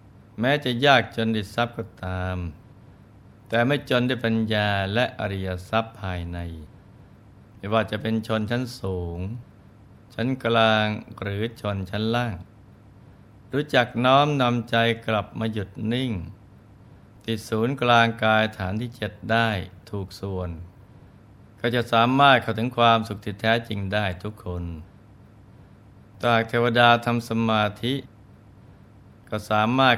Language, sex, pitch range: Thai, male, 100-115 Hz